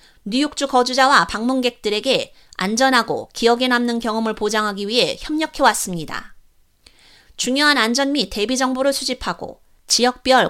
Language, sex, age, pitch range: Korean, female, 30-49, 225-270 Hz